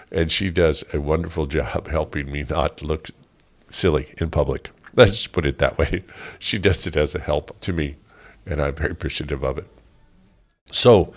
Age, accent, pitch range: 50-69, American, 80-95 Hz